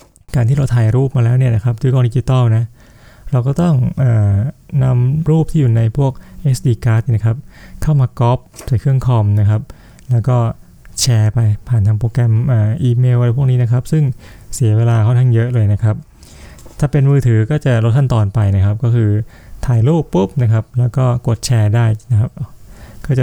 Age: 20-39